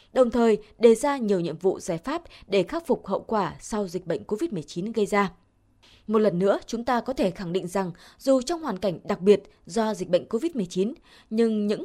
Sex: female